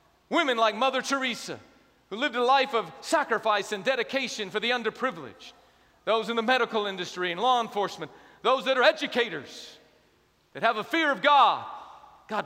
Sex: male